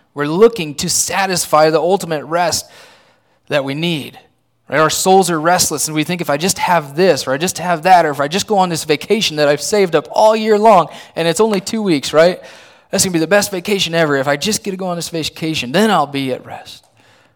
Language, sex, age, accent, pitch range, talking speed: English, male, 20-39, American, 135-180 Hz, 245 wpm